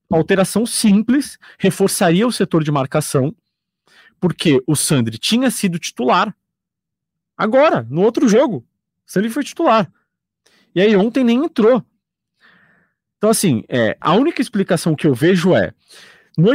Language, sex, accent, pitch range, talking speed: Portuguese, male, Brazilian, 155-220 Hz, 130 wpm